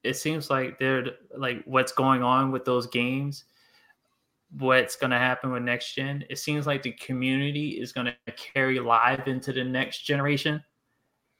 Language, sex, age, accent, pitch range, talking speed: English, male, 20-39, American, 130-150 Hz, 165 wpm